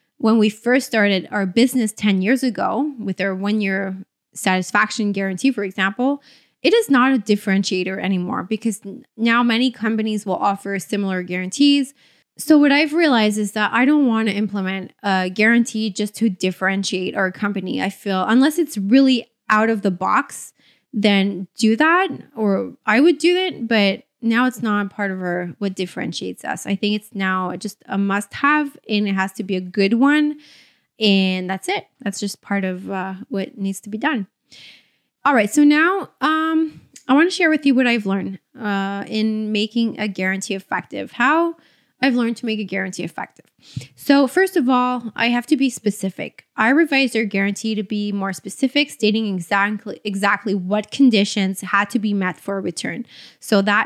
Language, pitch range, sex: English, 195-255 Hz, female